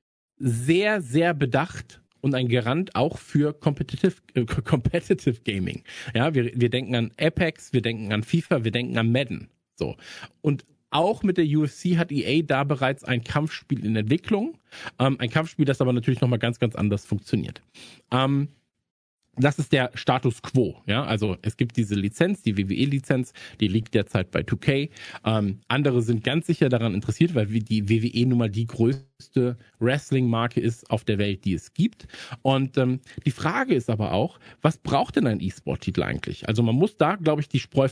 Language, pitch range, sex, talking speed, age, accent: German, 115-150 Hz, male, 180 wpm, 50-69, German